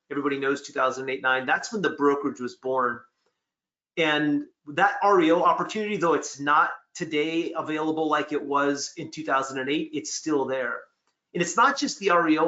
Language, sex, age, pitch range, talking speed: English, male, 30-49, 130-155 Hz, 155 wpm